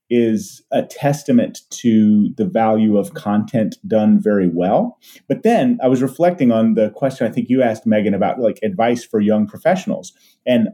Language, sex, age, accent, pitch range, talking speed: English, male, 30-49, American, 105-140 Hz, 175 wpm